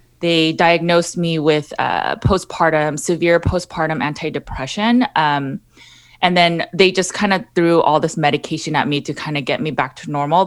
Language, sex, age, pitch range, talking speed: English, female, 20-39, 145-170 Hz, 170 wpm